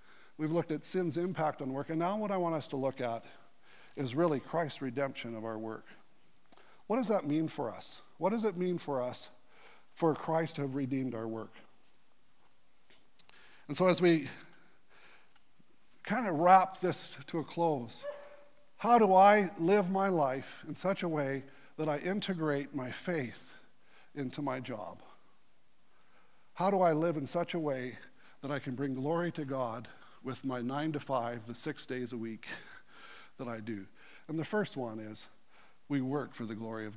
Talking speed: 180 wpm